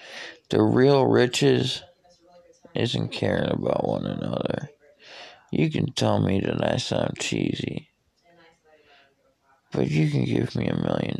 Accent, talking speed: American, 125 wpm